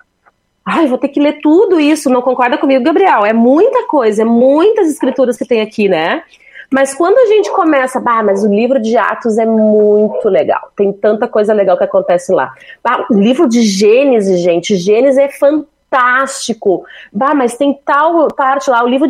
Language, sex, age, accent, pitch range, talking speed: Portuguese, female, 30-49, Brazilian, 225-285 Hz, 185 wpm